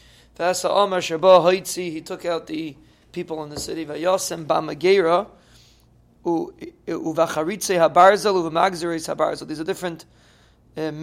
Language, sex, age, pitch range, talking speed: English, male, 30-49, 155-190 Hz, 65 wpm